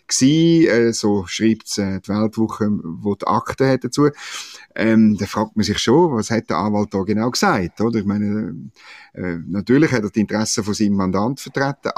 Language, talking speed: German, 180 wpm